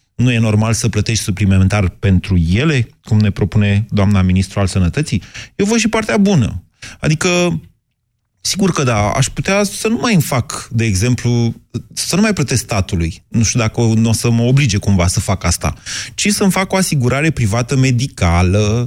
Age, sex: 30-49, male